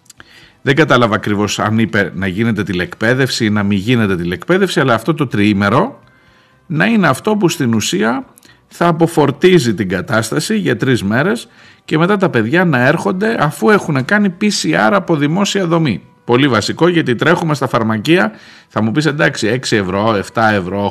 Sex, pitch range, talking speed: male, 110-165 Hz, 165 wpm